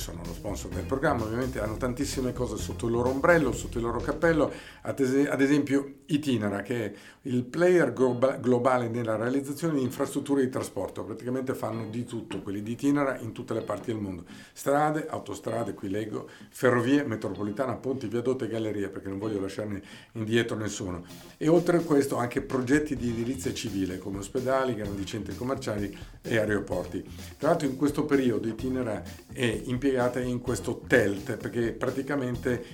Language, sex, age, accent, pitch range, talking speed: Italian, male, 50-69, native, 100-130 Hz, 170 wpm